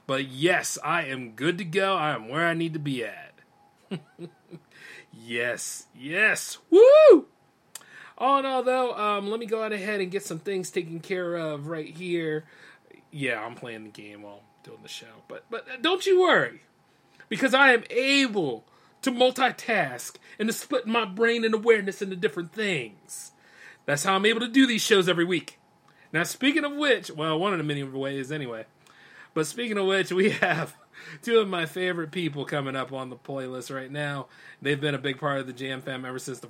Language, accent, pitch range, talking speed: English, American, 130-195 Hz, 195 wpm